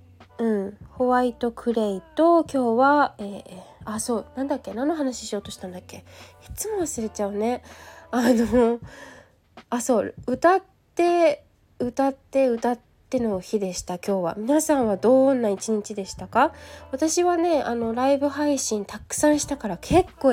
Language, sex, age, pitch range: Japanese, female, 20-39, 210-290 Hz